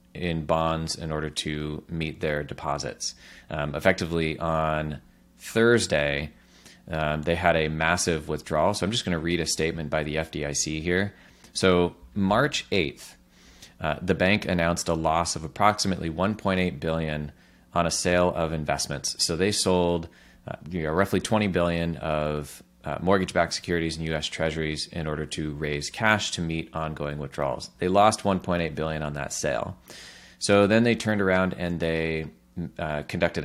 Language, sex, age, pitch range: English, male, 30-49, 75-90 Hz